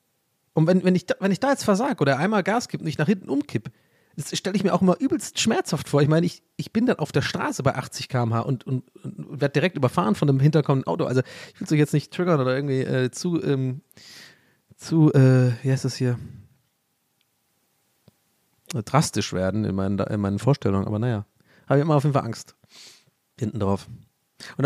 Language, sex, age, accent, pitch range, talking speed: German, male, 30-49, German, 120-180 Hz, 215 wpm